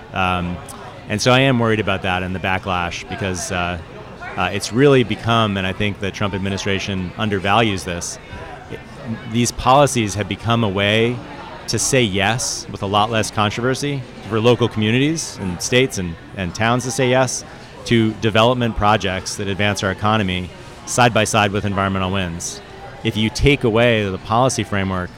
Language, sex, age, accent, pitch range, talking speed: English, male, 30-49, American, 100-120 Hz, 165 wpm